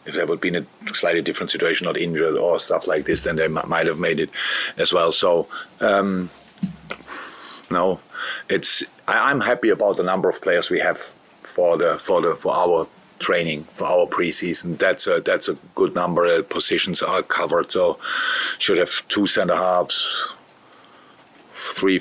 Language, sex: English, male